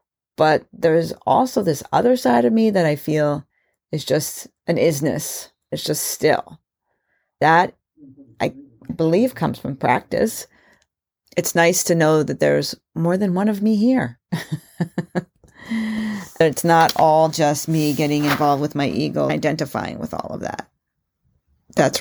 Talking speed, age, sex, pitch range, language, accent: 145 wpm, 40-59, female, 140-165 Hz, English, American